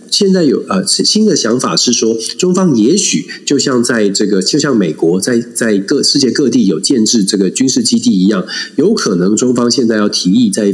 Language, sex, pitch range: Chinese, male, 105-165 Hz